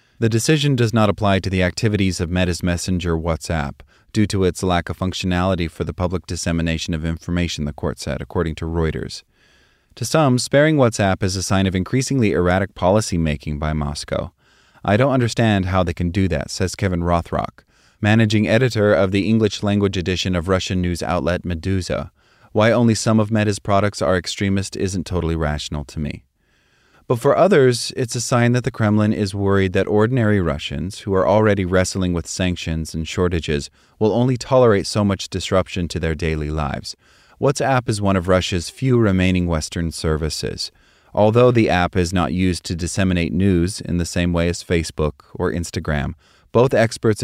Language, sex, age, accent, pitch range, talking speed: English, male, 30-49, American, 85-110 Hz, 180 wpm